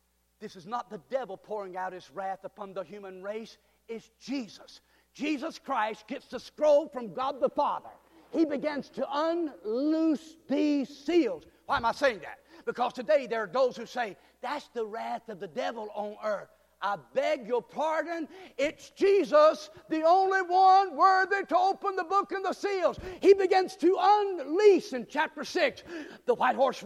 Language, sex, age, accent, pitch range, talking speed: English, male, 50-69, American, 245-315 Hz, 170 wpm